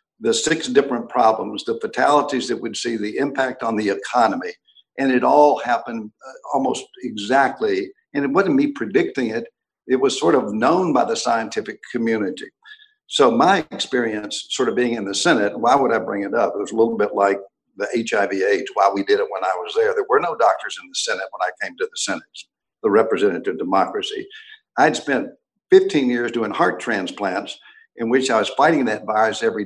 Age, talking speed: 60-79, 200 wpm